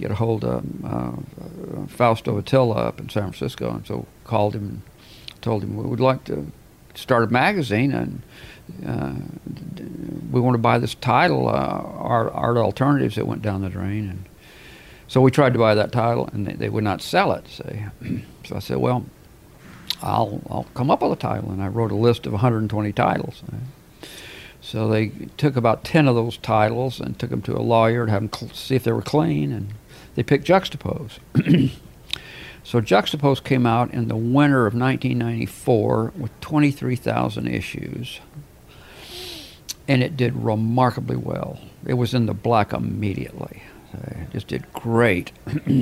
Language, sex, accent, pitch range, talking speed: English, male, American, 105-130 Hz, 175 wpm